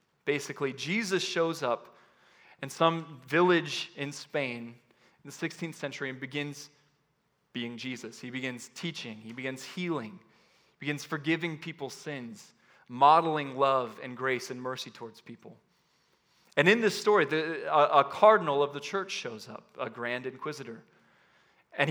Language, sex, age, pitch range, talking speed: English, male, 20-39, 130-175 Hz, 140 wpm